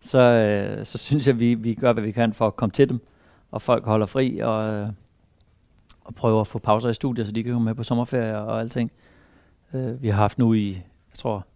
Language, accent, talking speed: Danish, native, 245 wpm